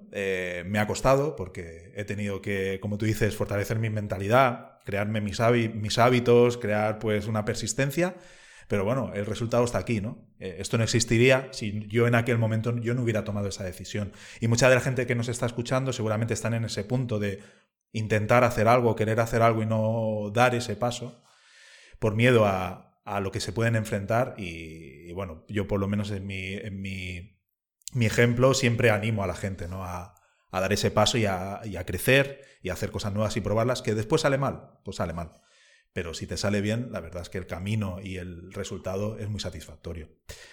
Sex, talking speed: male, 205 wpm